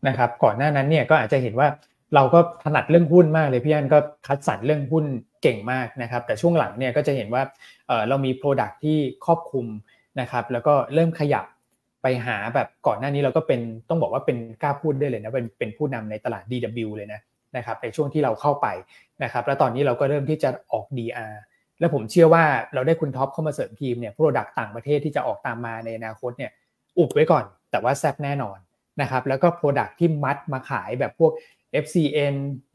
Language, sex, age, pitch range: Thai, male, 20-39, 120-150 Hz